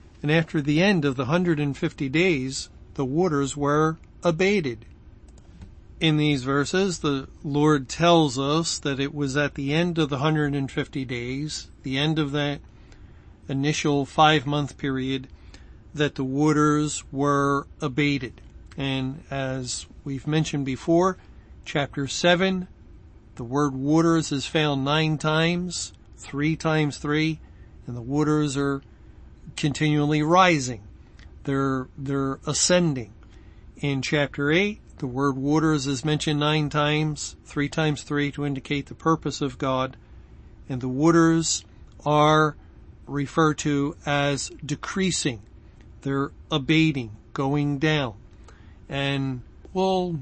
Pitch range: 130-155 Hz